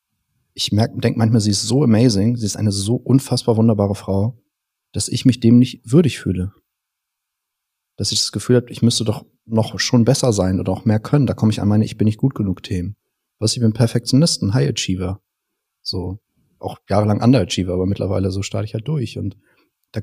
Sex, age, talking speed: male, 40-59, 210 wpm